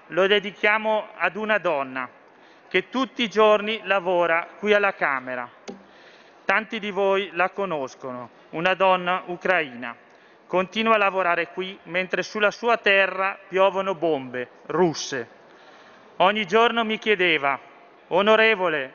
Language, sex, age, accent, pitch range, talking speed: Italian, male, 40-59, native, 175-205 Hz, 115 wpm